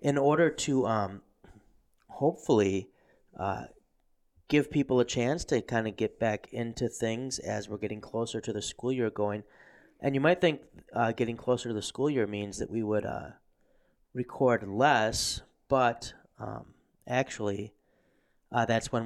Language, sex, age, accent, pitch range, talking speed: English, male, 30-49, American, 105-120 Hz, 155 wpm